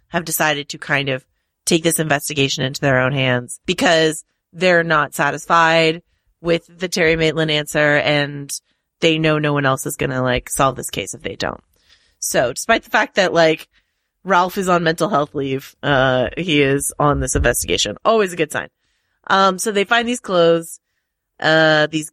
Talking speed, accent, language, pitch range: 180 wpm, American, English, 145-175 Hz